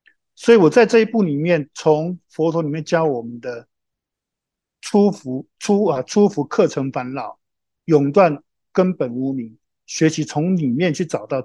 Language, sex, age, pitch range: Chinese, male, 50-69, 135-180 Hz